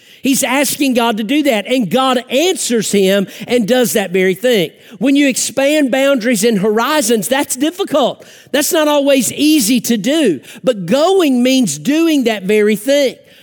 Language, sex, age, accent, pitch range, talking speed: English, male, 50-69, American, 235-295 Hz, 160 wpm